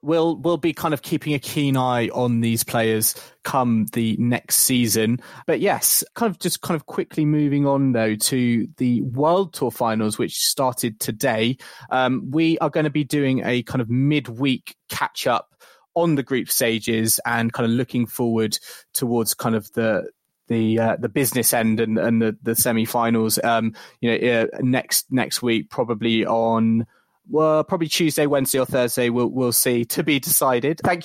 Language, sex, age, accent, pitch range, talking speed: English, male, 20-39, British, 115-150 Hz, 180 wpm